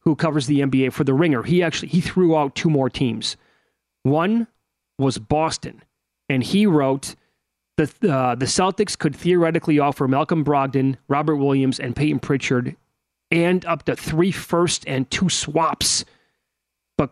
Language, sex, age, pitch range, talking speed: English, male, 30-49, 130-155 Hz, 155 wpm